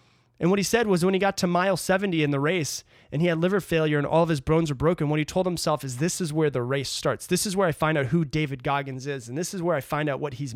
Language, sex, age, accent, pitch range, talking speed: English, male, 30-49, American, 135-180 Hz, 320 wpm